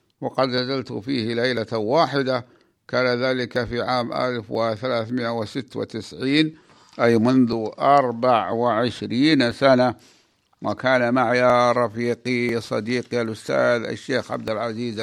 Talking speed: 90 wpm